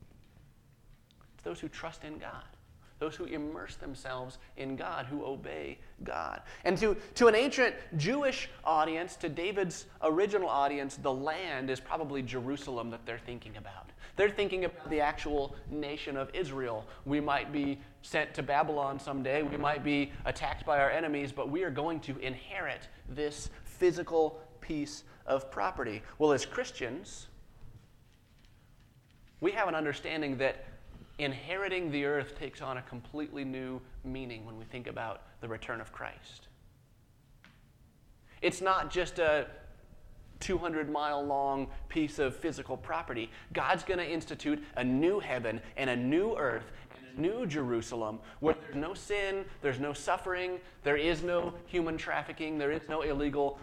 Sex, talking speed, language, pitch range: male, 150 wpm, English, 130-160 Hz